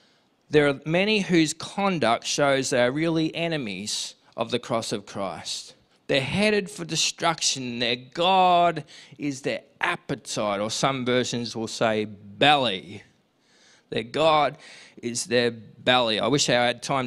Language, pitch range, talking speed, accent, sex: English, 125-165 Hz, 140 wpm, Australian, male